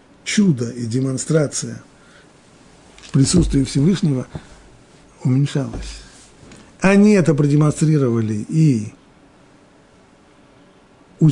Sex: male